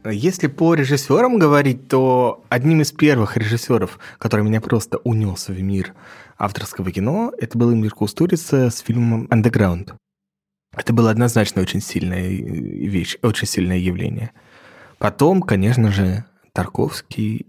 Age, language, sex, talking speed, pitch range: 20-39, Russian, male, 125 wpm, 95-115 Hz